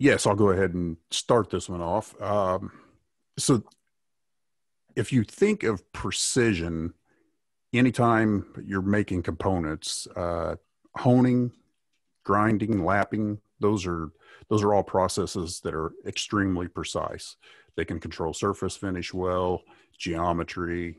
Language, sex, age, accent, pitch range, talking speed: English, male, 50-69, American, 85-105 Hz, 115 wpm